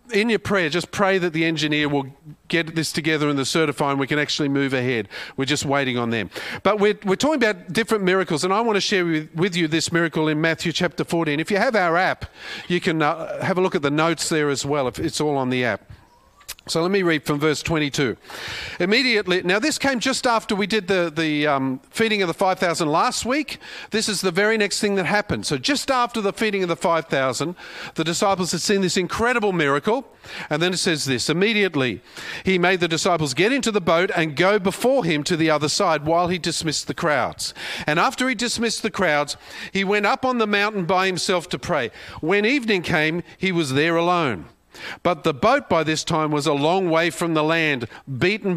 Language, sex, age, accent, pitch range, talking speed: English, male, 50-69, Australian, 150-195 Hz, 220 wpm